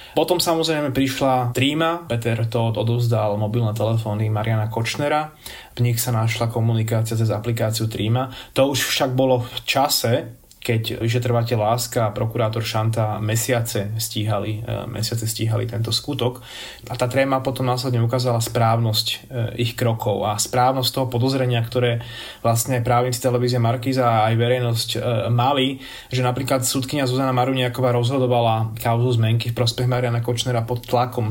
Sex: male